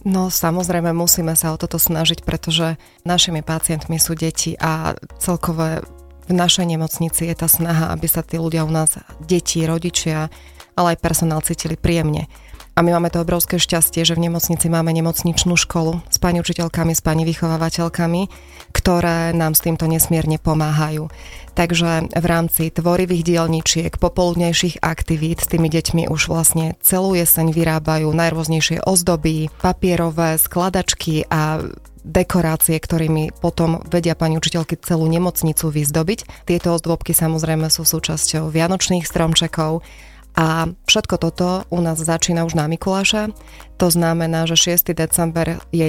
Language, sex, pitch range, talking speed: Slovak, female, 160-170 Hz, 140 wpm